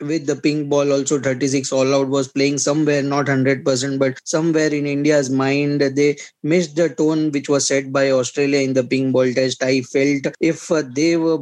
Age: 20-39